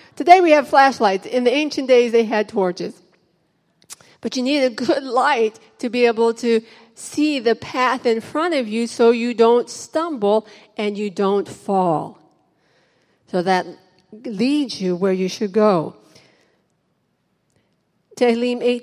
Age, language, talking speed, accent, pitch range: 50-69, English, 145 wpm, American, 230-290 Hz